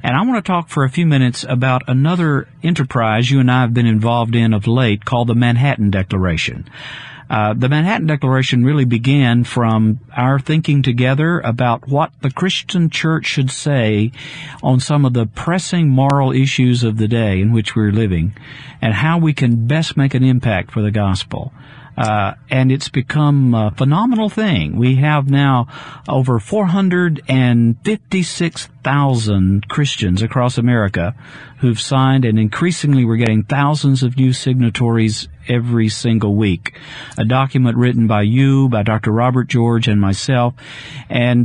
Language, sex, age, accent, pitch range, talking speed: English, male, 50-69, American, 115-145 Hz, 155 wpm